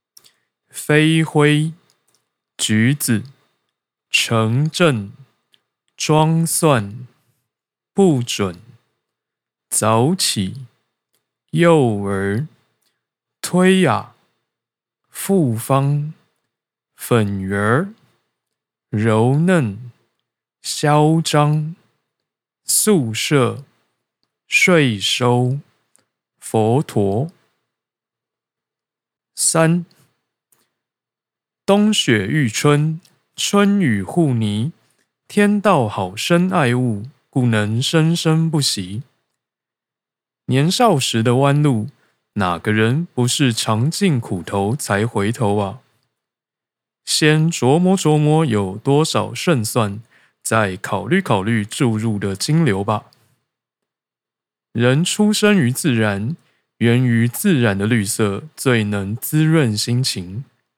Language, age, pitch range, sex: Chinese, 20-39, 110-155 Hz, male